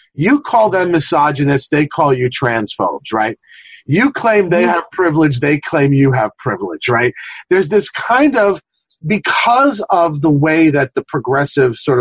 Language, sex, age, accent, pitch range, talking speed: English, male, 40-59, American, 135-185 Hz, 160 wpm